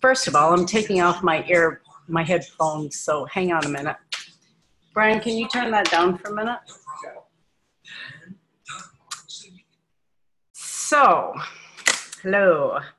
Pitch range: 165-190 Hz